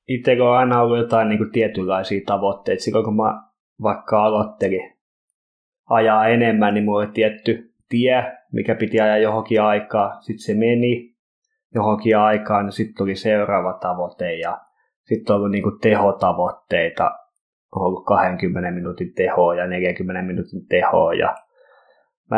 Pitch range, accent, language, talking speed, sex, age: 95-120 Hz, native, Finnish, 135 wpm, male, 20-39